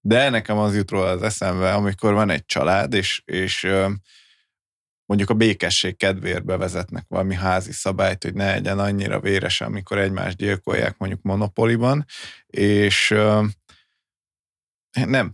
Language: Hungarian